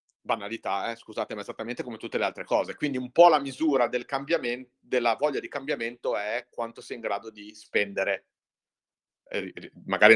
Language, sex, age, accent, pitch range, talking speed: Italian, male, 40-59, native, 115-190 Hz, 175 wpm